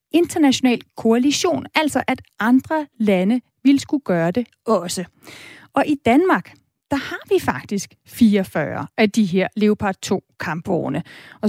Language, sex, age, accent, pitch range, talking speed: Danish, female, 30-49, native, 205-265 Hz, 135 wpm